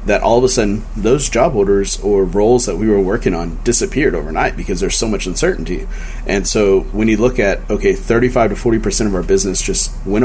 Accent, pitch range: American, 95-115 Hz